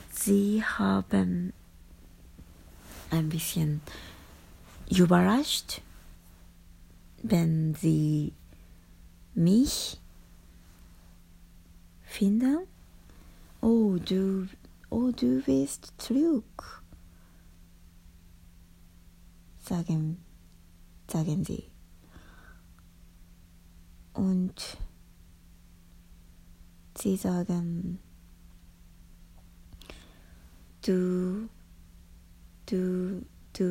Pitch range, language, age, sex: 85-135 Hz, Japanese, 30-49, female